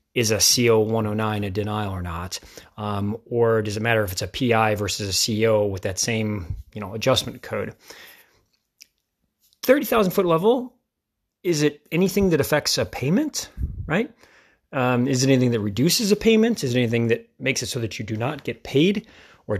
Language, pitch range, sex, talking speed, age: English, 110-155 Hz, male, 185 wpm, 30-49